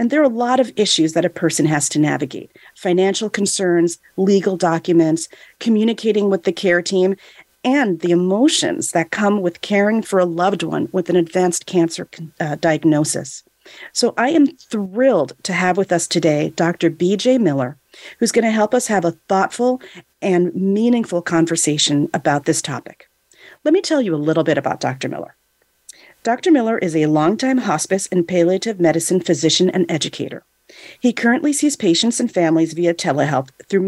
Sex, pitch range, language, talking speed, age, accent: female, 165-220 Hz, English, 170 wpm, 40-59, American